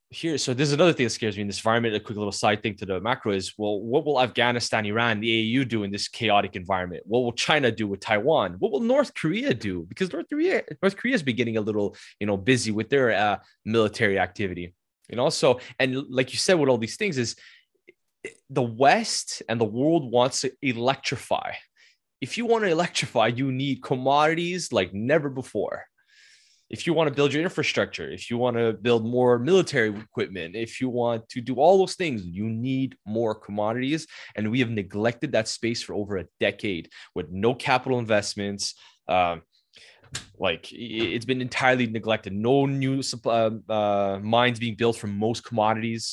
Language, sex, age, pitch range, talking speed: English, male, 20-39, 110-135 Hz, 190 wpm